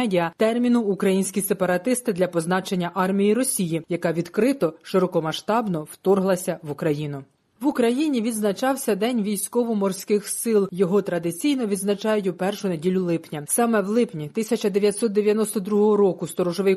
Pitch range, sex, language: 175-225 Hz, female, Ukrainian